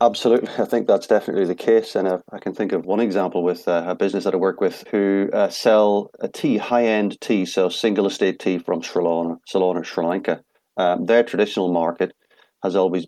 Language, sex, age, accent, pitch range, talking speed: English, male, 30-49, British, 90-110 Hz, 195 wpm